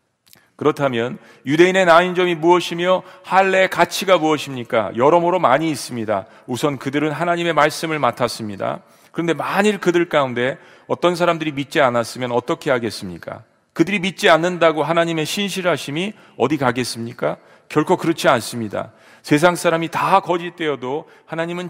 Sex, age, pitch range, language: male, 40-59, 135-175 Hz, Korean